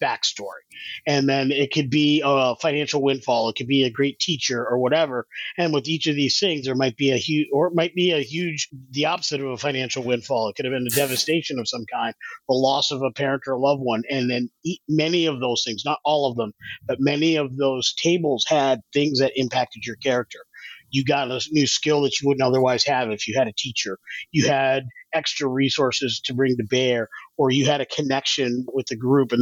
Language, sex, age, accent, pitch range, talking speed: English, male, 30-49, American, 125-150 Hz, 230 wpm